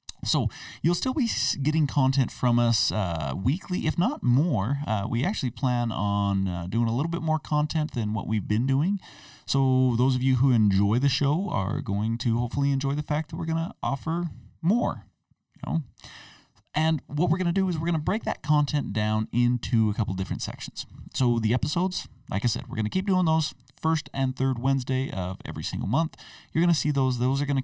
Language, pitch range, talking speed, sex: English, 100-140 Hz, 215 wpm, male